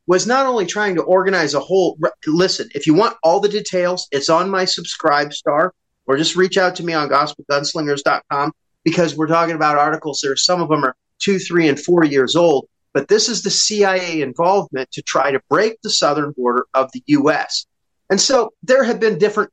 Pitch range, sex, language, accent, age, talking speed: 150-210 Hz, male, English, American, 30-49, 195 wpm